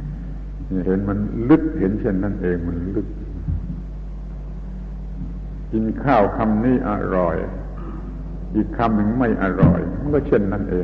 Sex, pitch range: male, 90-125 Hz